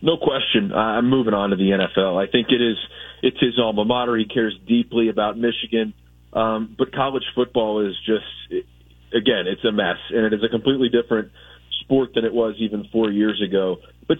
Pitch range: 110-130 Hz